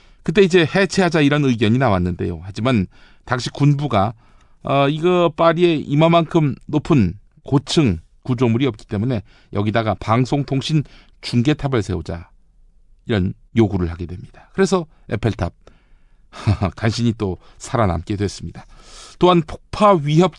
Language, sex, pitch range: Korean, male, 100-150 Hz